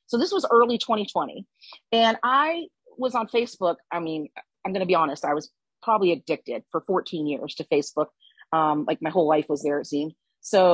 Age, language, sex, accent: 40-59, English, female, American